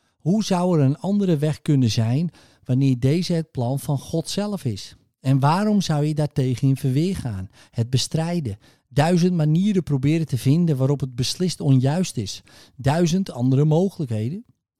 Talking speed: 160 wpm